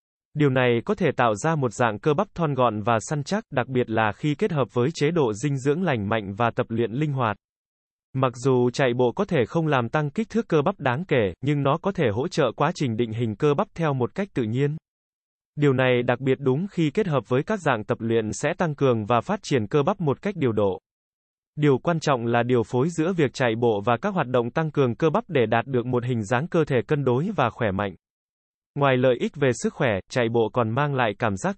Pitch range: 120-155 Hz